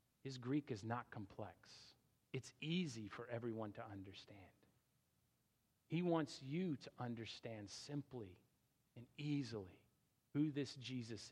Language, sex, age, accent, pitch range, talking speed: English, male, 40-59, American, 120-175 Hz, 115 wpm